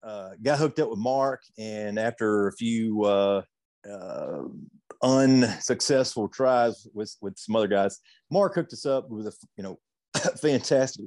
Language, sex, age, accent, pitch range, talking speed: English, male, 40-59, American, 100-125 Hz, 150 wpm